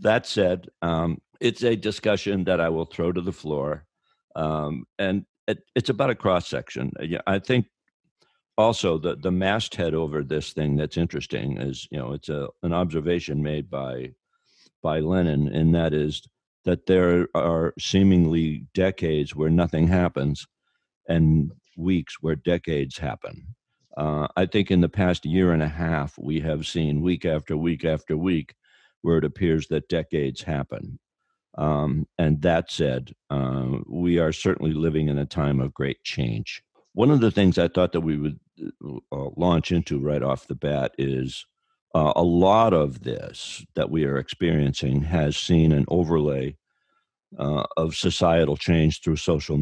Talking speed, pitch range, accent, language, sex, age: 160 wpm, 75-90 Hz, American, English, male, 60-79